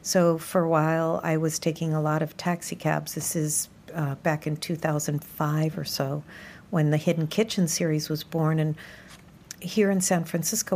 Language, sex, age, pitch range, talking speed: English, female, 50-69, 160-185 Hz, 180 wpm